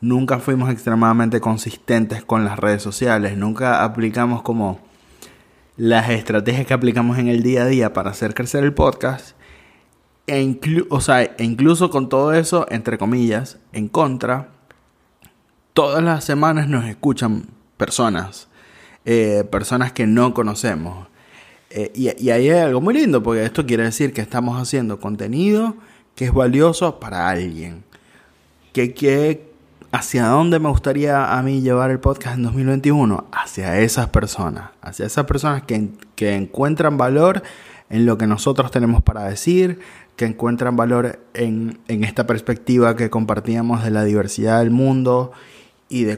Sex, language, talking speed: male, Spanish, 150 wpm